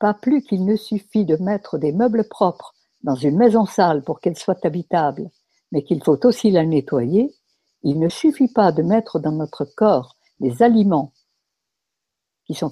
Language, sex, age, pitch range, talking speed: French, female, 60-79, 155-220 Hz, 175 wpm